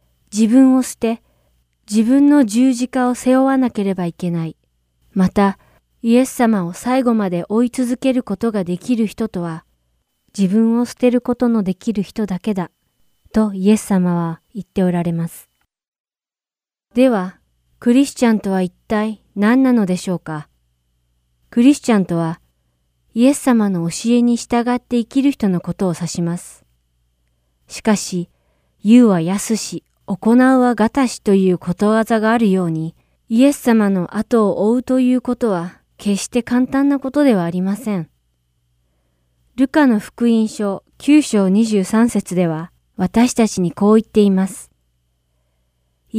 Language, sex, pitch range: Japanese, female, 170-240 Hz